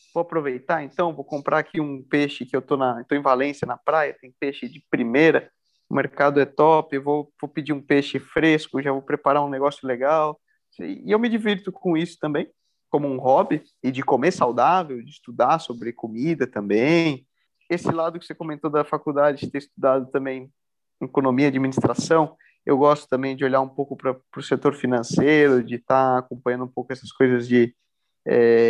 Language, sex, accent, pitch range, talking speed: Portuguese, male, Brazilian, 135-170 Hz, 190 wpm